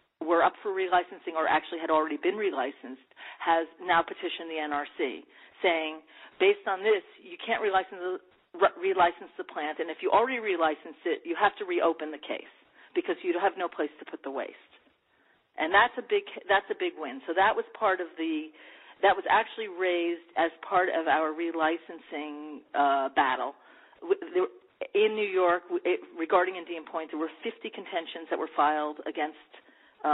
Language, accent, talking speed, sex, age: English, American, 175 wpm, female, 40-59